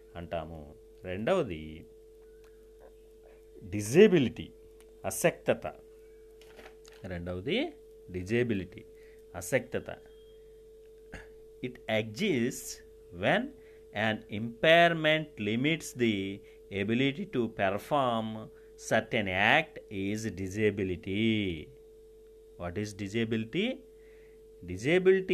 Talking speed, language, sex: 60 wpm, Telugu, male